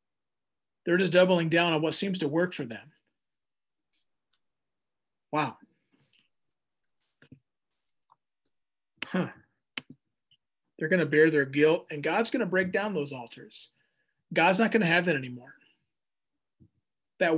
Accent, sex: American, male